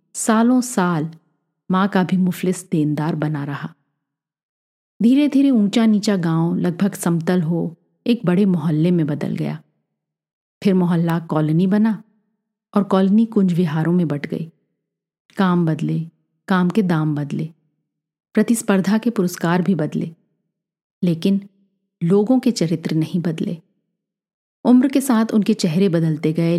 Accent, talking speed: native, 130 wpm